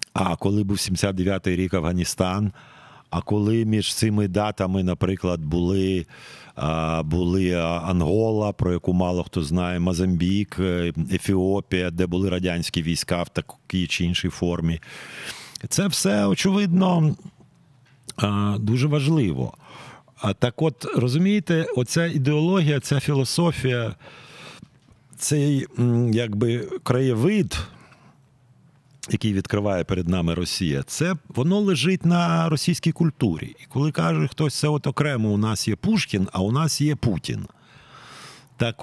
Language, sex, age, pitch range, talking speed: Ukrainian, male, 50-69, 95-145 Hz, 115 wpm